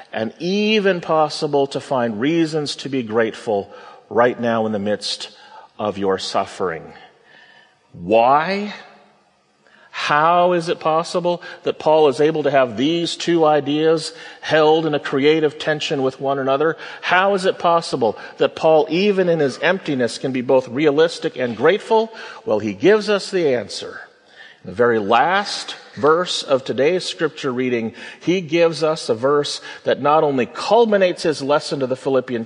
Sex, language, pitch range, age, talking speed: male, English, 125-175 Hz, 40-59, 155 wpm